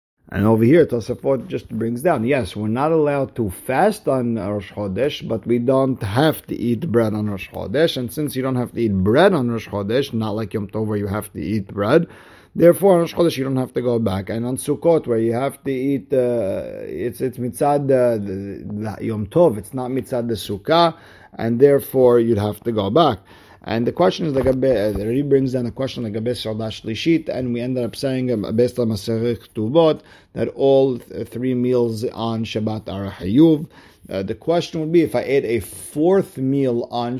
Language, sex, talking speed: English, male, 205 wpm